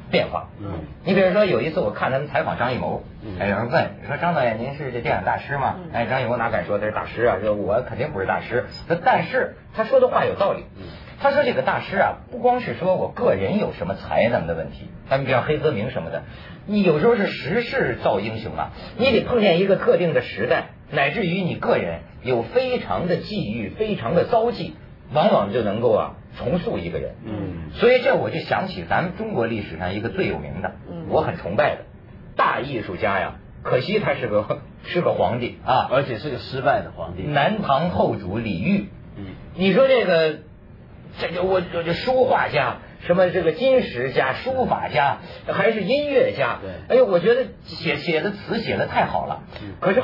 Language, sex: Chinese, male